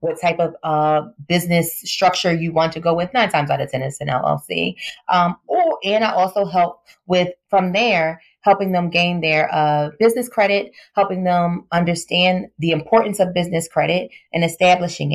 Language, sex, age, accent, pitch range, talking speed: English, female, 20-39, American, 160-190 Hz, 180 wpm